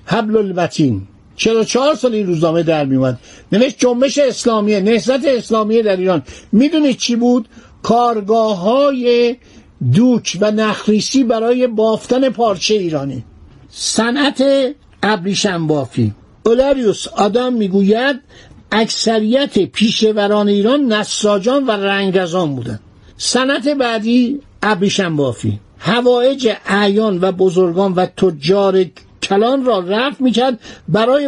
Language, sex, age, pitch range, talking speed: Persian, male, 60-79, 190-245 Hz, 105 wpm